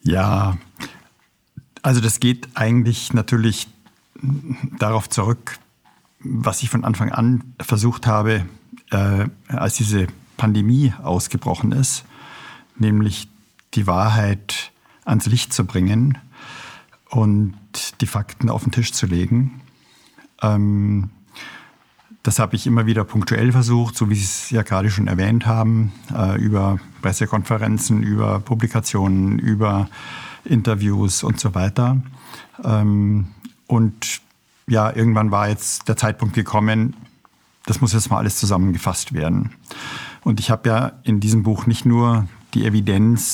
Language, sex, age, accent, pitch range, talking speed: German, male, 50-69, German, 105-120 Hz, 120 wpm